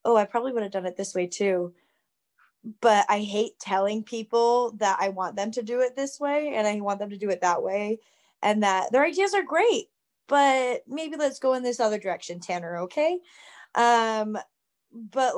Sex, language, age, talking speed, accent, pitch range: female, English, 20-39, 200 wpm, American, 185-225 Hz